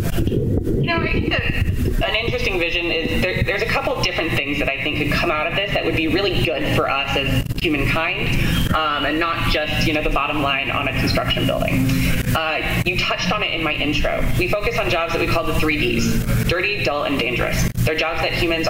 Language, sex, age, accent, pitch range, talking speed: English, female, 20-39, American, 140-165 Hz, 230 wpm